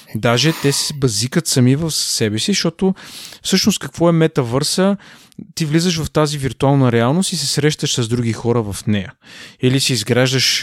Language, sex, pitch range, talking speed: Bulgarian, male, 110-140 Hz, 170 wpm